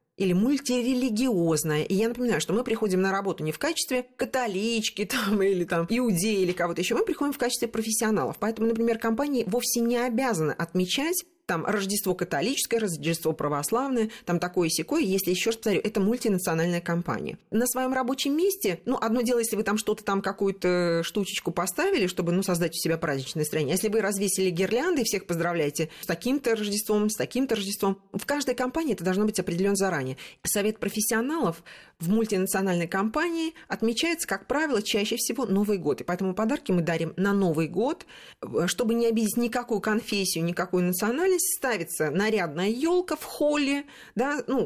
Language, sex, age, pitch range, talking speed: Russian, female, 30-49, 175-240 Hz, 165 wpm